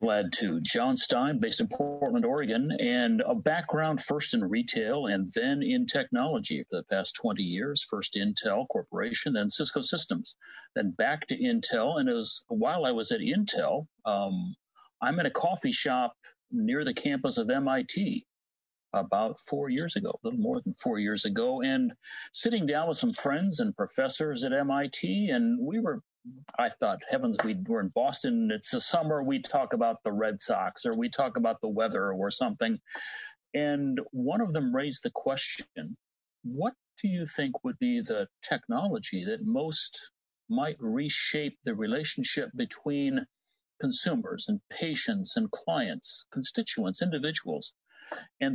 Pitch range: 155-245 Hz